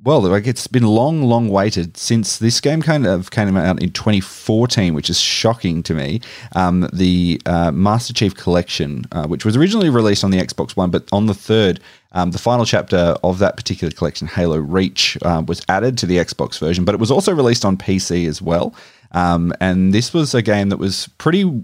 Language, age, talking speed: English, 30-49, 205 wpm